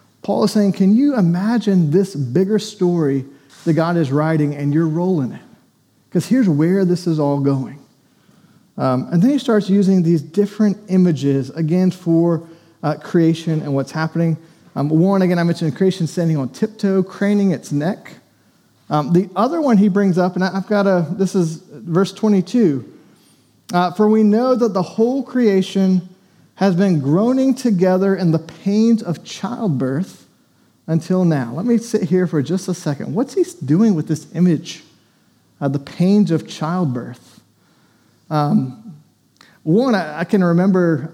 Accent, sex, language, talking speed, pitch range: American, male, English, 160 wpm, 150-195 Hz